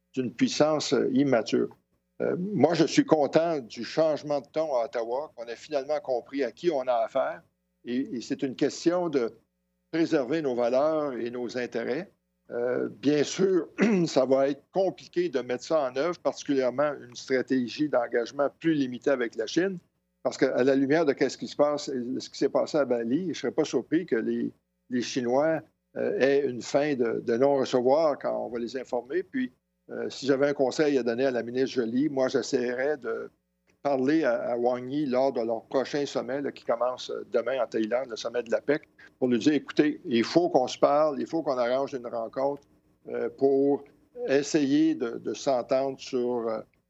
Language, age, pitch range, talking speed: French, 60-79, 125-155 Hz, 190 wpm